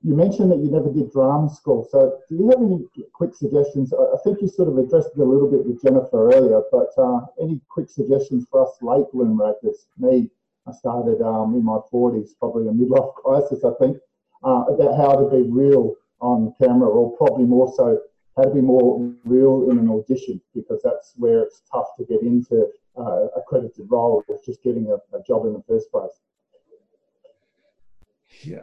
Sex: male